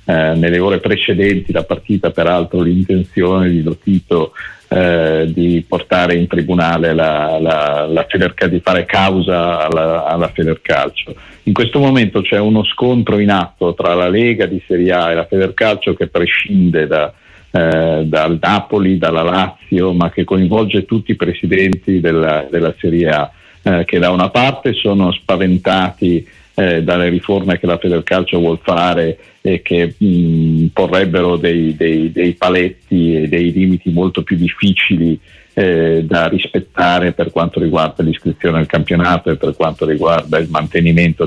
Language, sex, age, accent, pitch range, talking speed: Italian, male, 50-69, native, 80-95 Hz, 150 wpm